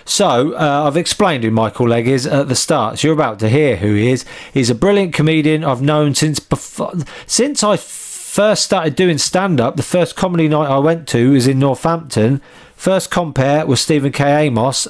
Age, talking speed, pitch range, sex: 40-59, 200 wpm, 125-155 Hz, male